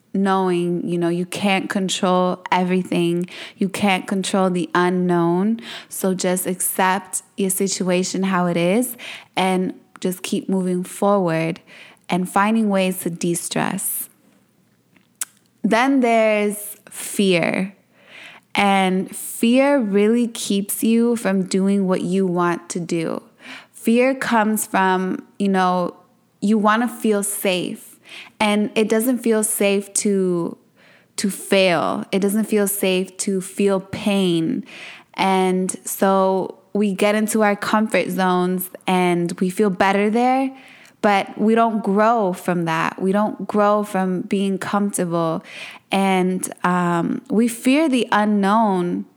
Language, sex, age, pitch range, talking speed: English, female, 20-39, 185-215 Hz, 125 wpm